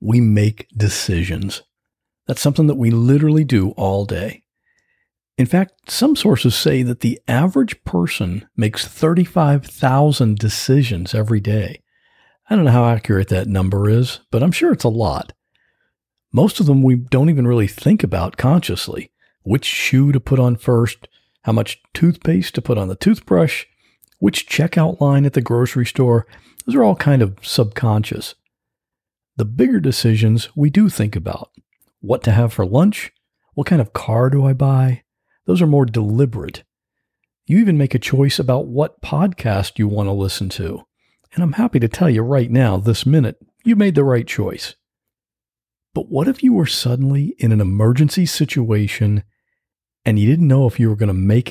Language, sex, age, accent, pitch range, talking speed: English, male, 50-69, American, 110-145 Hz, 170 wpm